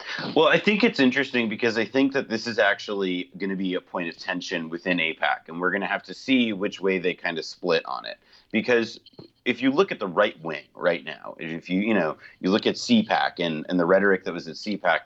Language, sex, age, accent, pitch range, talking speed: English, male, 30-49, American, 95-115 Hz, 240 wpm